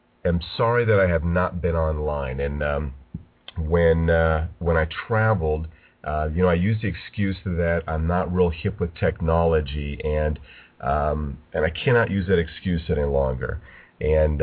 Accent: American